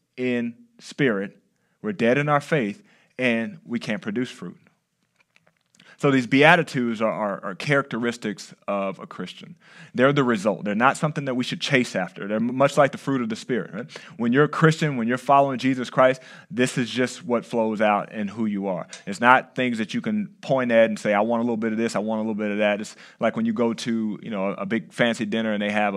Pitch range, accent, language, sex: 110-150 Hz, American, English, male